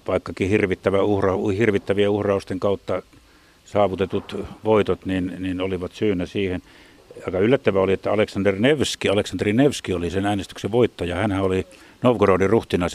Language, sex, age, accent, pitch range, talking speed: Finnish, male, 60-79, native, 95-105 Hz, 125 wpm